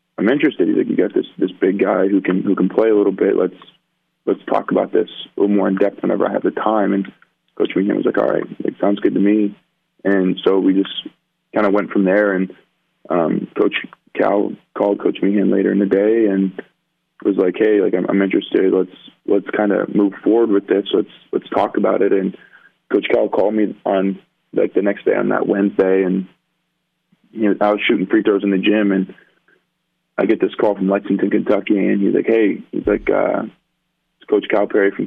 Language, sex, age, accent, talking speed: English, male, 20-39, American, 225 wpm